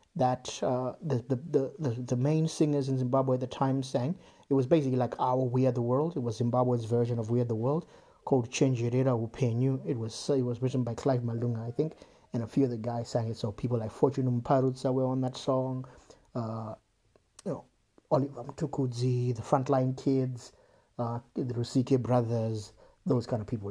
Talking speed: 195 wpm